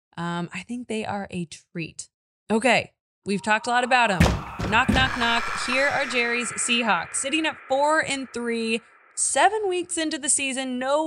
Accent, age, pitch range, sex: American, 20-39, 180-245 Hz, female